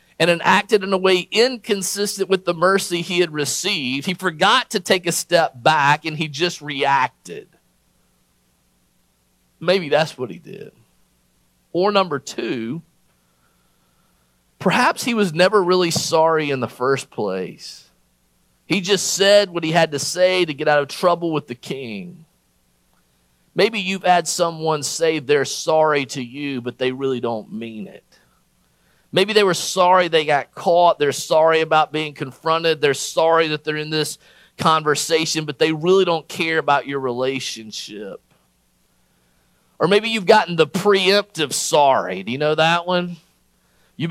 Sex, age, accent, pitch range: male, 40-59, American, 140-195 Hz